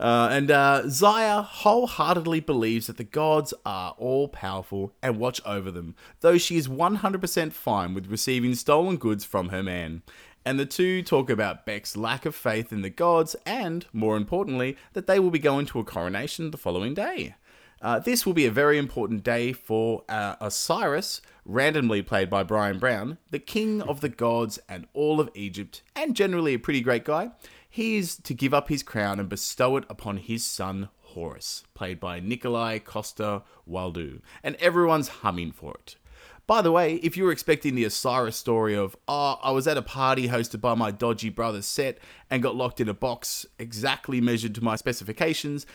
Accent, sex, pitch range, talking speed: Australian, male, 110-150 Hz, 185 wpm